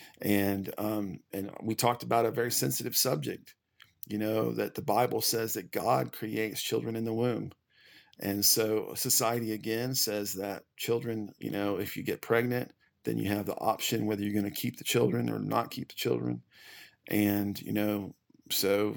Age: 40-59